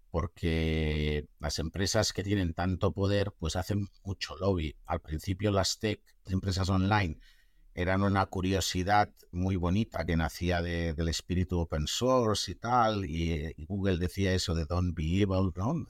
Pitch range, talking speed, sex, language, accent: 85-110 Hz, 160 wpm, male, Spanish, Spanish